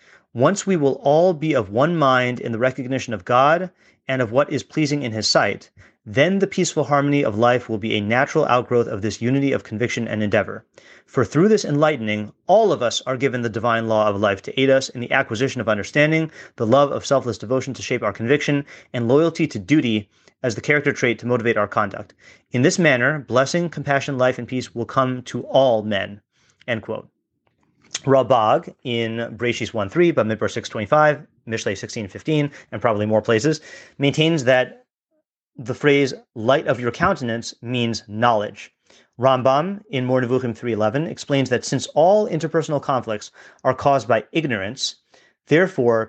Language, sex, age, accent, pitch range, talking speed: English, male, 30-49, American, 115-145 Hz, 175 wpm